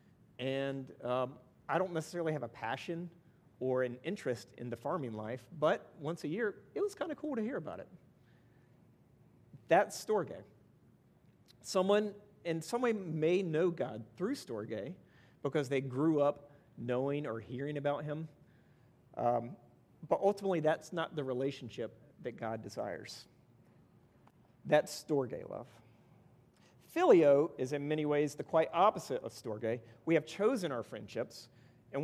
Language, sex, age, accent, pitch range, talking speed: English, male, 40-59, American, 125-165 Hz, 145 wpm